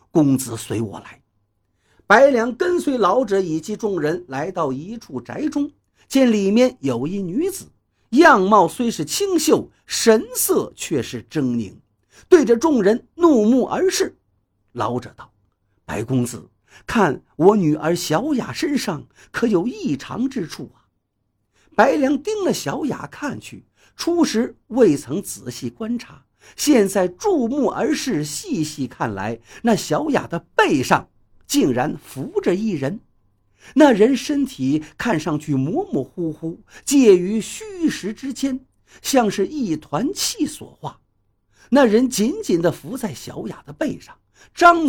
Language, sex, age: Chinese, male, 50-69